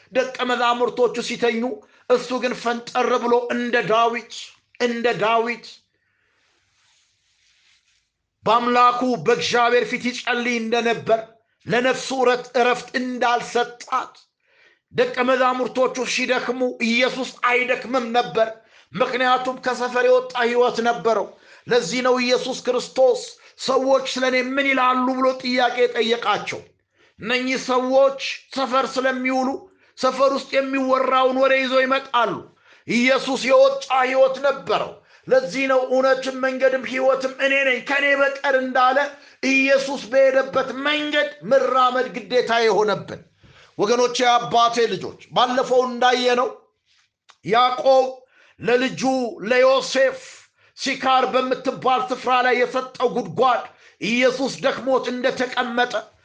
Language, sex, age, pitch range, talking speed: Amharic, male, 50-69, 245-265 Hz, 100 wpm